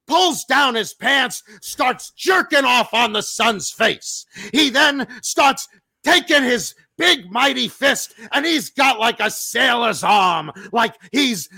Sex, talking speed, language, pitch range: male, 145 wpm, English, 230-305 Hz